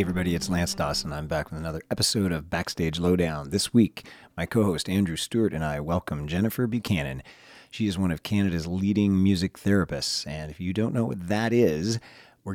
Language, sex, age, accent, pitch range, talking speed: English, male, 40-59, American, 80-115 Hz, 195 wpm